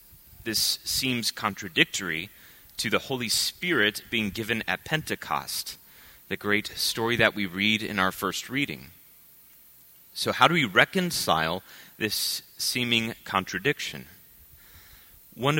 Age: 30-49